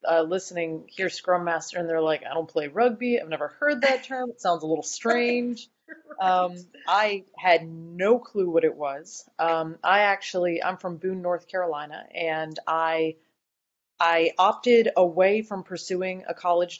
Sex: female